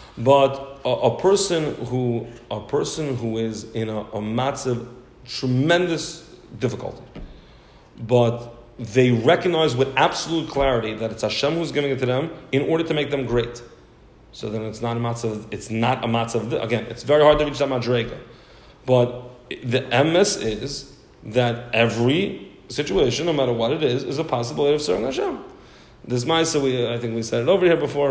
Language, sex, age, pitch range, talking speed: English, male, 40-59, 115-150 Hz, 180 wpm